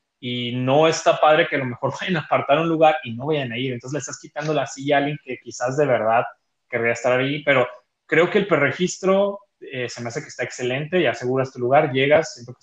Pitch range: 125-155 Hz